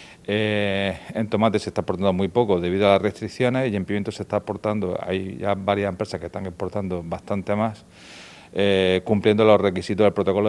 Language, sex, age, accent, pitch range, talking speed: Spanish, male, 40-59, Spanish, 95-105 Hz, 190 wpm